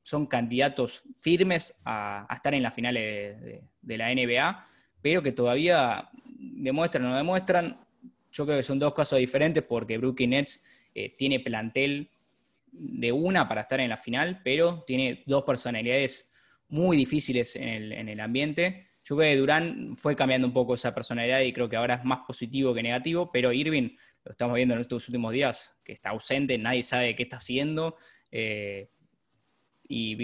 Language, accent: Spanish, Argentinian